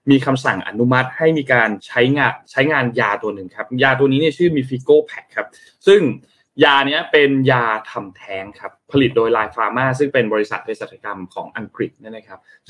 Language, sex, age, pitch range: Thai, male, 20-39, 115-155 Hz